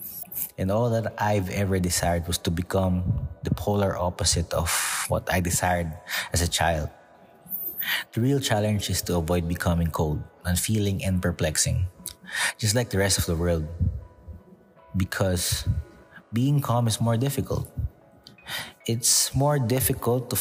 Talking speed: 140 wpm